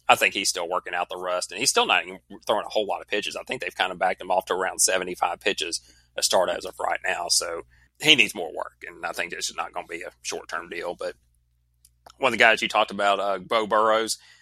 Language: English